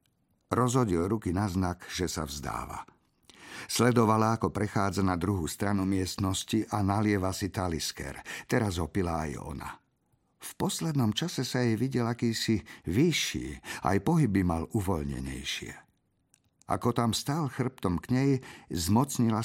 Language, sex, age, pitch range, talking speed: Slovak, male, 50-69, 95-125 Hz, 125 wpm